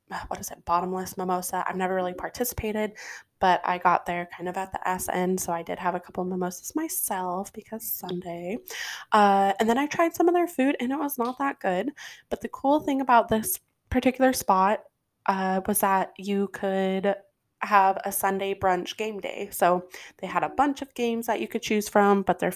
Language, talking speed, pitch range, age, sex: English, 205 wpm, 185-235 Hz, 20-39, female